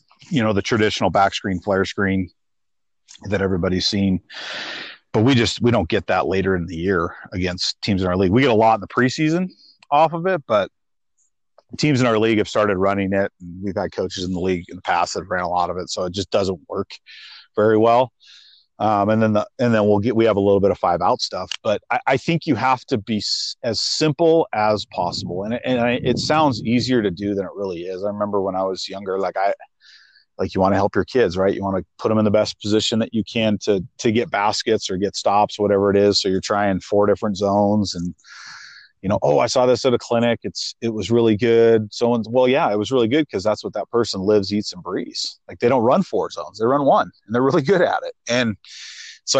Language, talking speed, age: English, 245 wpm, 40-59